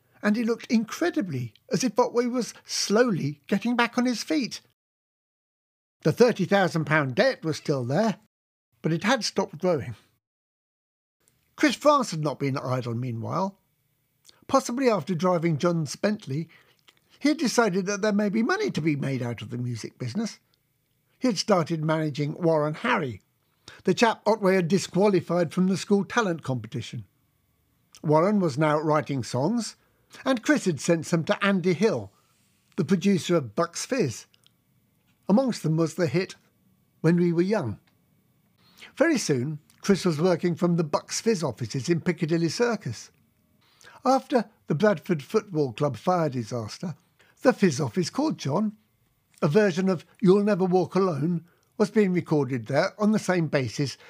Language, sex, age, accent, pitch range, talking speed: English, male, 60-79, British, 140-210 Hz, 150 wpm